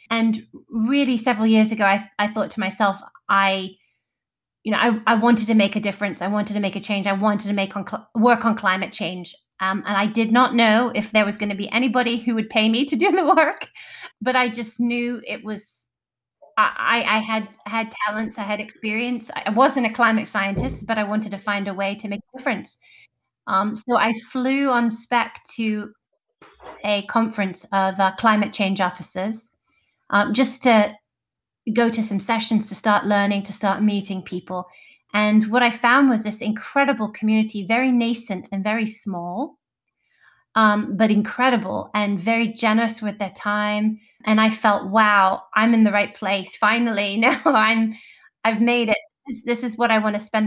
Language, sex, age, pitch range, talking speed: English, female, 30-49, 200-230 Hz, 190 wpm